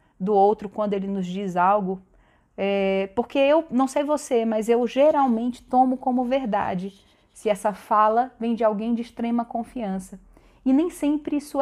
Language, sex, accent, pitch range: Portuguese, female, Brazilian, 195-245 Hz